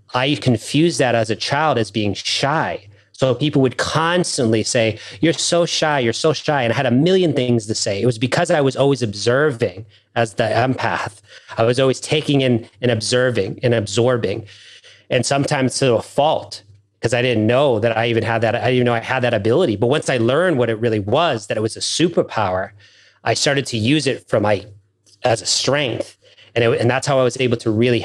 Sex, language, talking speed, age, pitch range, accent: male, English, 215 wpm, 30-49, 110-150 Hz, American